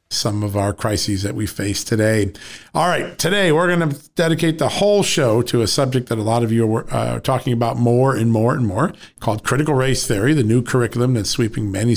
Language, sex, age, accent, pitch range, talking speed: English, male, 50-69, American, 110-135 Hz, 225 wpm